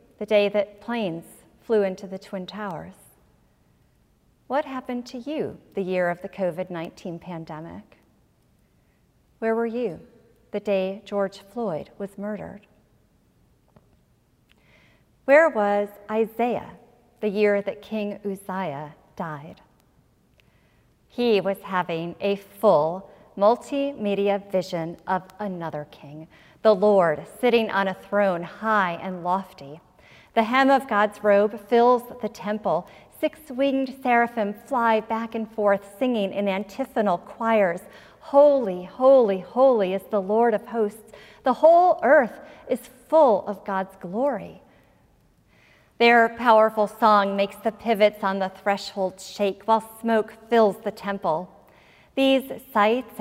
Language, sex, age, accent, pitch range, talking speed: English, female, 40-59, American, 195-235 Hz, 120 wpm